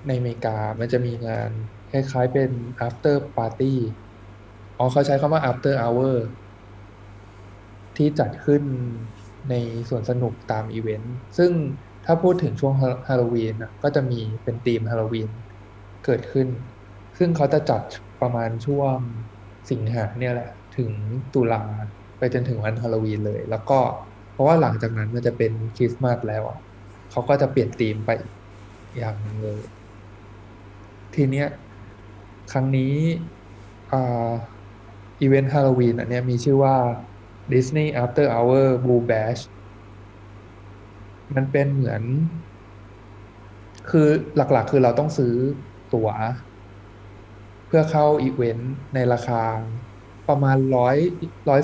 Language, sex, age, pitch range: Thai, male, 20-39, 105-135 Hz